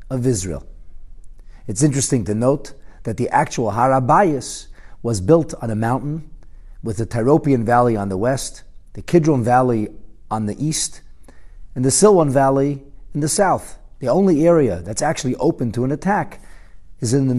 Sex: male